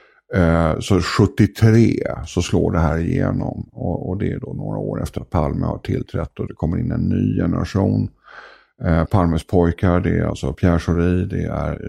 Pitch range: 85-110 Hz